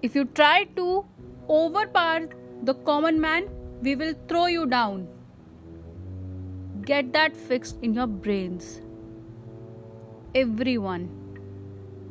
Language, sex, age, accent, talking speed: Hindi, female, 30-49, native, 100 wpm